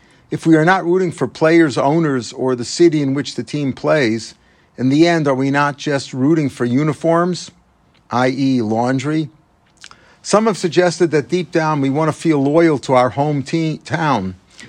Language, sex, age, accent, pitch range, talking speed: English, male, 50-69, American, 130-160 Hz, 175 wpm